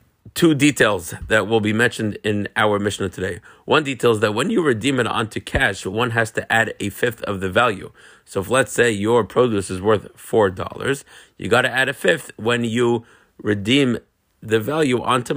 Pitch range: 105-125 Hz